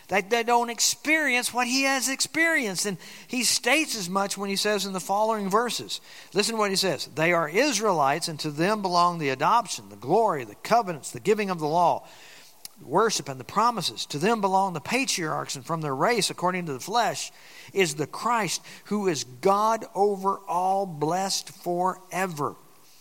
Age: 50-69